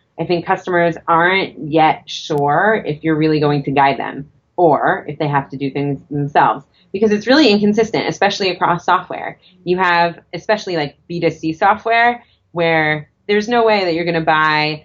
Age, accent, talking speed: 30-49, American, 175 wpm